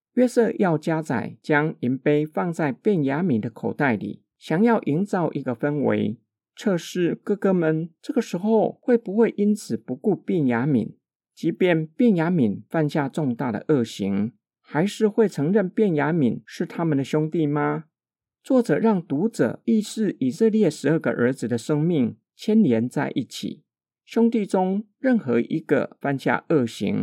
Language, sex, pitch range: Chinese, male, 145-210 Hz